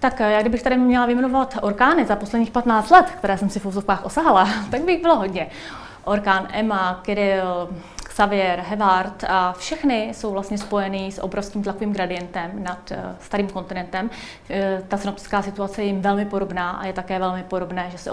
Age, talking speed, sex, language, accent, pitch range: 30-49, 175 wpm, female, Czech, native, 185-210 Hz